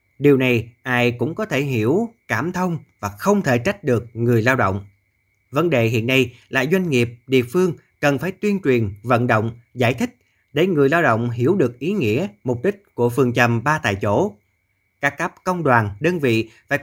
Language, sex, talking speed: Vietnamese, male, 205 wpm